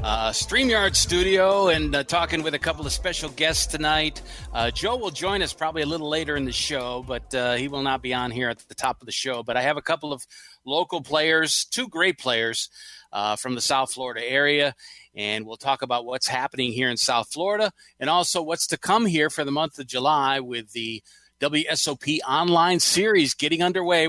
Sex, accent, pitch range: male, American, 125-160 Hz